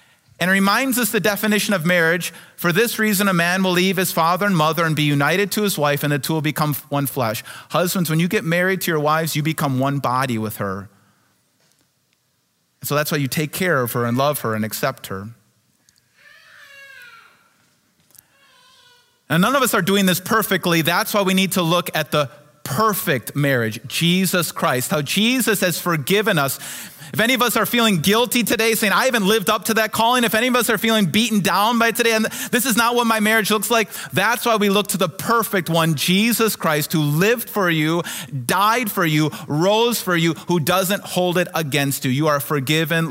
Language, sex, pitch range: English, male, 145-215 Hz